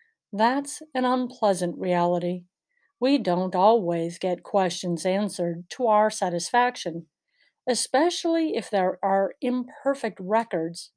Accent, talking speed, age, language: American, 105 wpm, 50-69, English